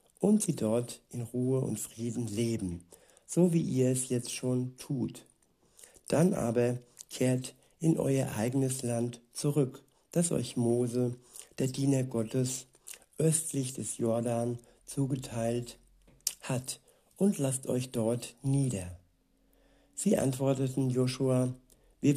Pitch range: 120-135 Hz